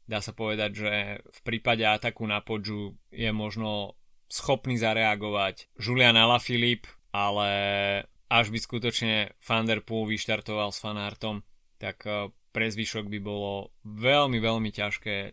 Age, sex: 20-39, male